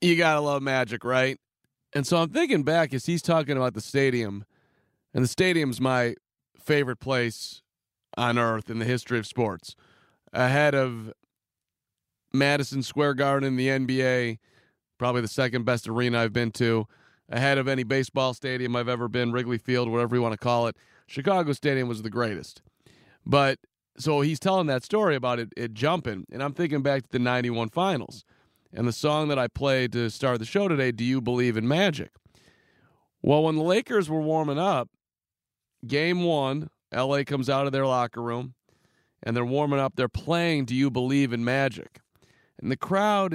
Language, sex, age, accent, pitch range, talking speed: English, male, 30-49, American, 120-150 Hz, 180 wpm